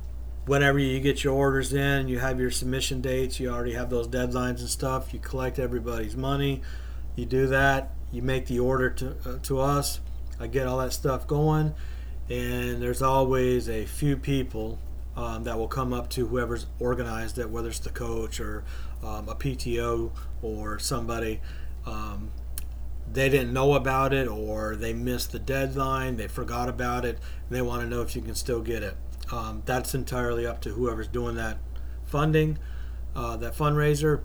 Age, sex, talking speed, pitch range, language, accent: 40-59, male, 180 wpm, 100-130 Hz, English, American